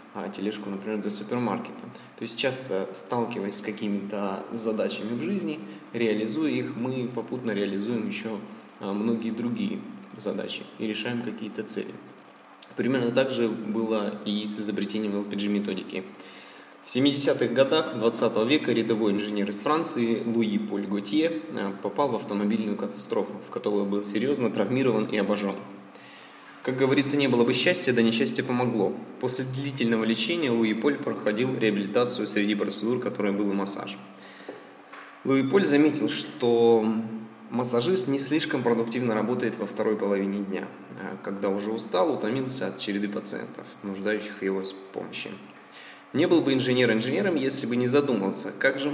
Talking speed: 140 wpm